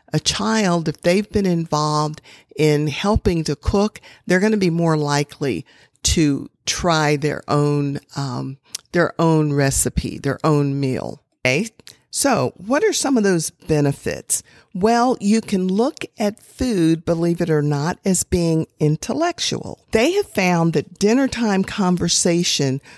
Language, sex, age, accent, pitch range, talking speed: English, female, 50-69, American, 150-200 Hz, 145 wpm